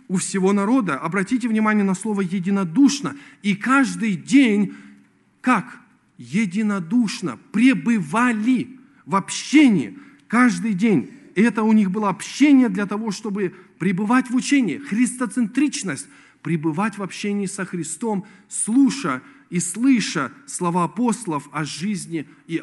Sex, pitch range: male, 175-240 Hz